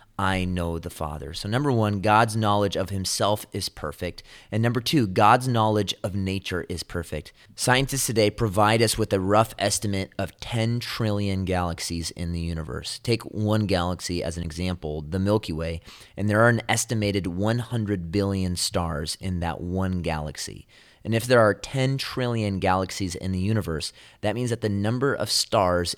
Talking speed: 175 wpm